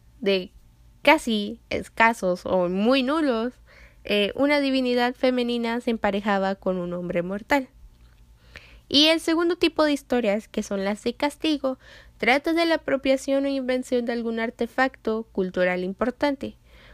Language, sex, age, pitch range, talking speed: Spanish, female, 10-29, 200-265 Hz, 135 wpm